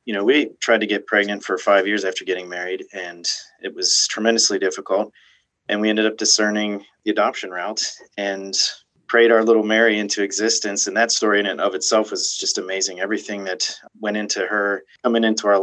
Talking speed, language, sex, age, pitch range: 195 wpm, English, male, 30-49, 100-120 Hz